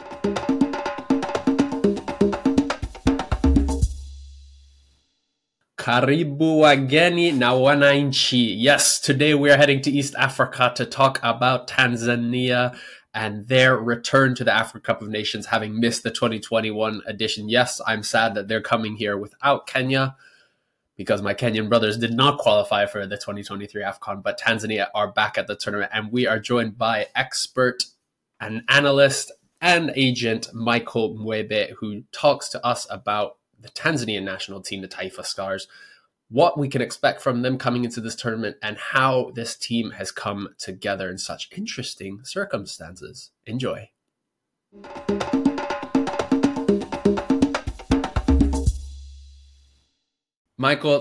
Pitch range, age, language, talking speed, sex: 110-145 Hz, 20-39, English, 120 wpm, male